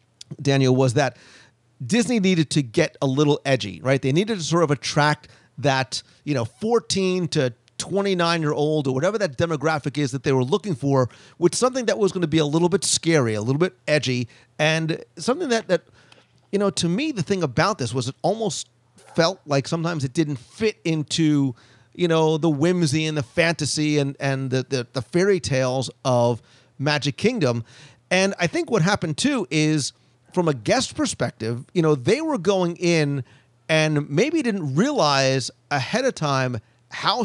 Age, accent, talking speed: 40-59, American, 180 wpm